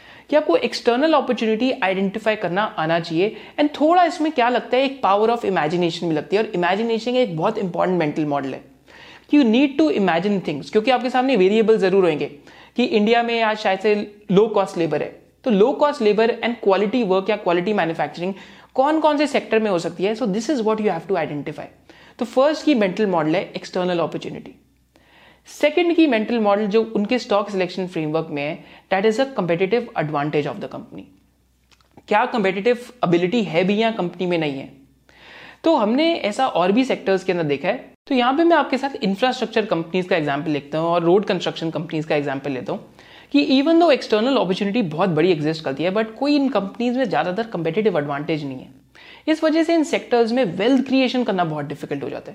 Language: Hindi